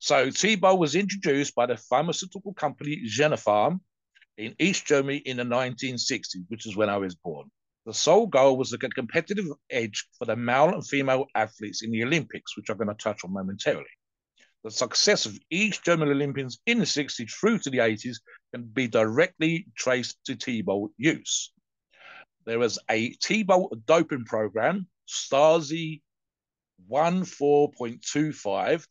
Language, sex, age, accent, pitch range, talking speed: English, male, 50-69, British, 115-155 Hz, 155 wpm